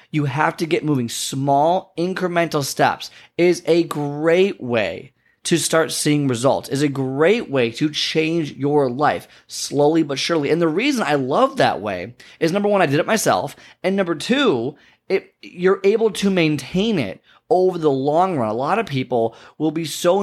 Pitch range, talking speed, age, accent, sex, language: 135-170 Hz, 180 wpm, 20-39, American, male, English